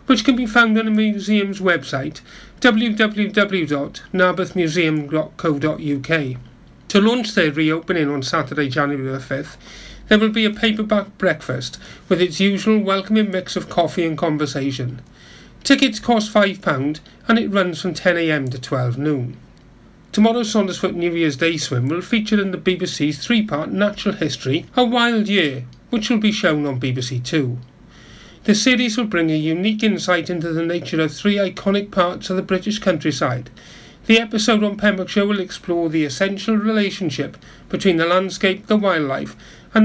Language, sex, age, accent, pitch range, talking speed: English, male, 40-59, British, 150-210 Hz, 150 wpm